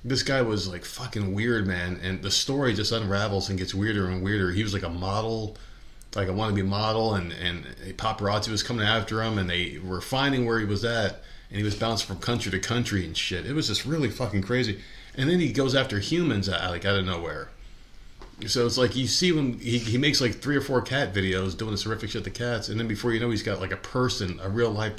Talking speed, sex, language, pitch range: 245 wpm, male, English, 95-120 Hz